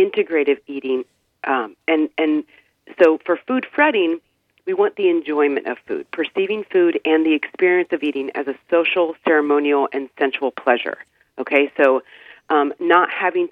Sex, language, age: female, English, 40-59